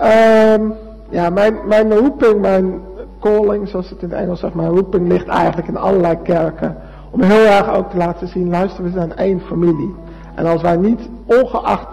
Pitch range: 170-210 Hz